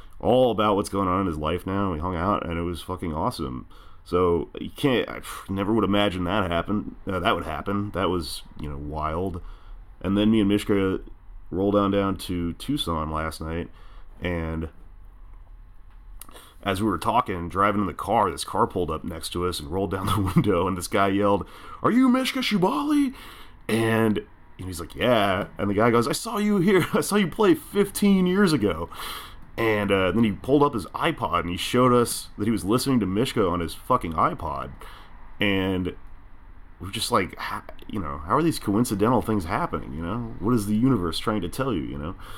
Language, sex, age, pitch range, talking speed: English, male, 30-49, 85-110 Hz, 200 wpm